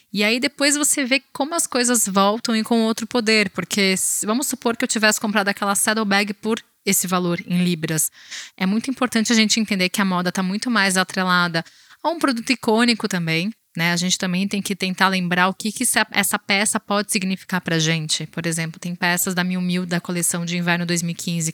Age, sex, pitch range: 20-39, female, 180-230 Hz